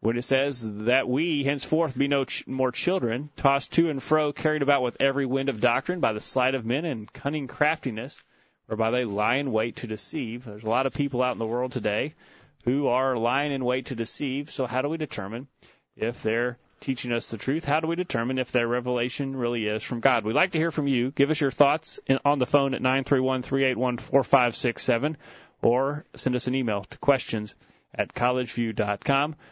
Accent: American